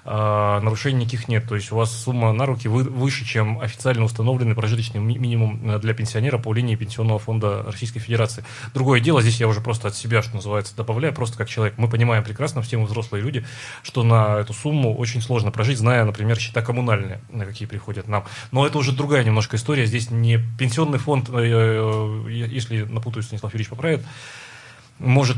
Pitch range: 110-125 Hz